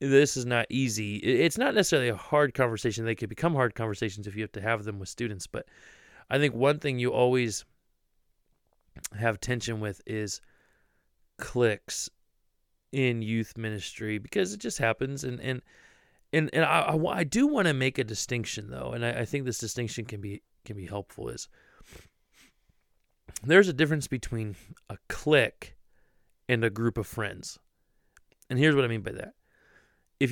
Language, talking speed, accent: English, 170 wpm, American